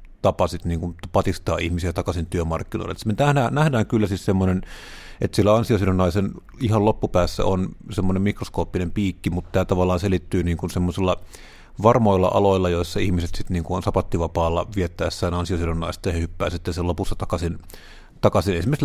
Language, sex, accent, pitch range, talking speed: Finnish, male, native, 90-105 Hz, 135 wpm